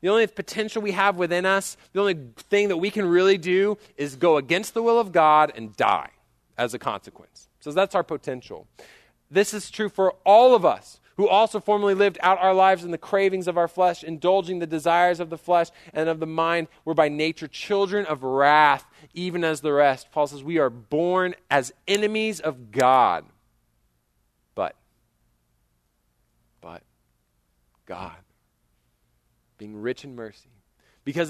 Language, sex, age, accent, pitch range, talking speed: English, male, 30-49, American, 130-195 Hz, 170 wpm